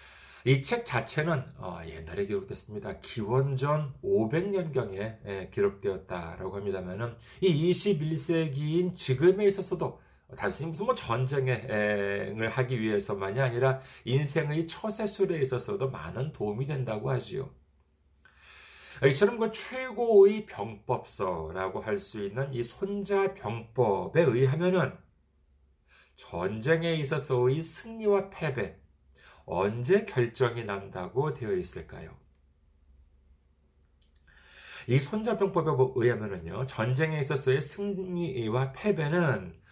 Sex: male